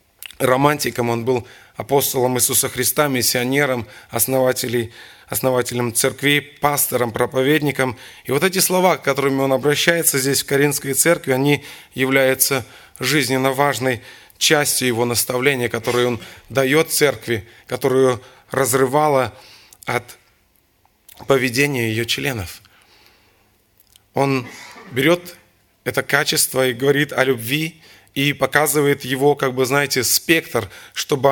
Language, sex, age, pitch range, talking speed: Russian, male, 20-39, 120-145 Hz, 105 wpm